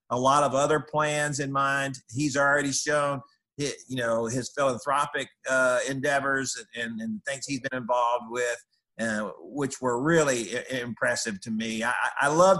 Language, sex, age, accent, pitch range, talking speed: English, male, 50-69, American, 120-150 Hz, 140 wpm